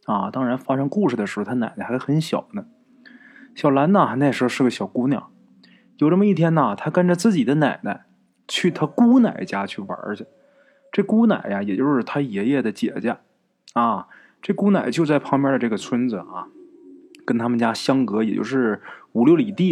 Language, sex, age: Chinese, male, 20-39